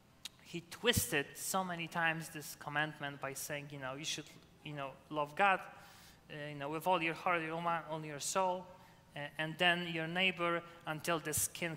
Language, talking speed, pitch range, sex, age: English, 185 wpm, 145-180 Hz, male, 20-39